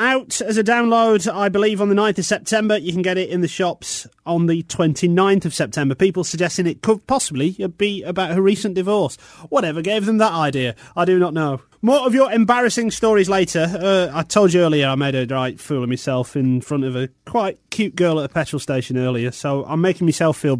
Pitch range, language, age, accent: 145-210 Hz, English, 30-49, British